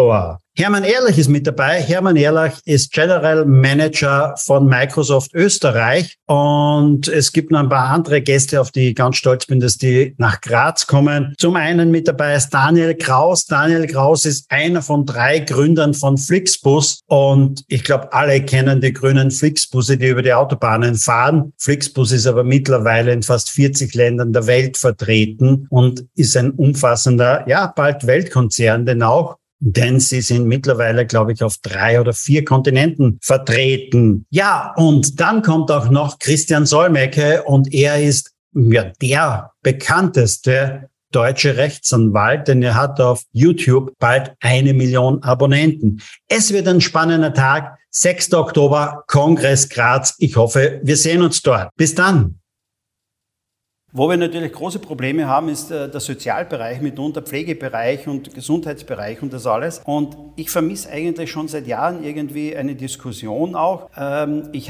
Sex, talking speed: male, 150 wpm